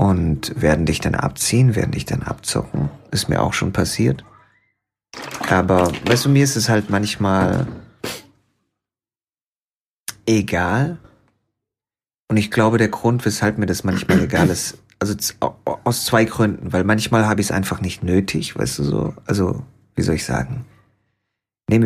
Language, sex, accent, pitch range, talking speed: German, male, German, 95-120 Hz, 155 wpm